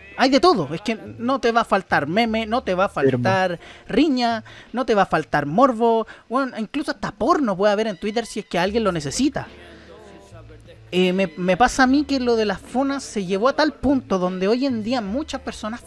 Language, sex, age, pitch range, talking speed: Spanish, male, 30-49, 175-240 Hz, 225 wpm